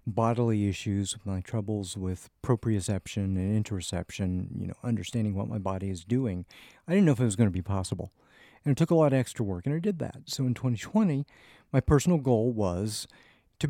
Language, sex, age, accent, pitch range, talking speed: English, male, 50-69, American, 100-135 Hz, 200 wpm